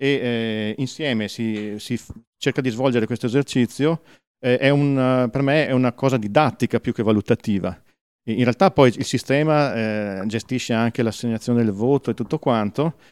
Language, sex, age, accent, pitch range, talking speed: Italian, male, 40-59, native, 115-140 Hz, 155 wpm